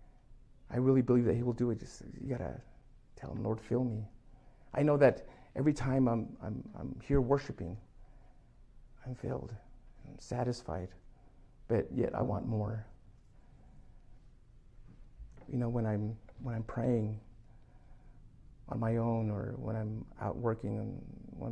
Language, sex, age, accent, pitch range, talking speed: English, male, 50-69, American, 110-125 Hz, 150 wpm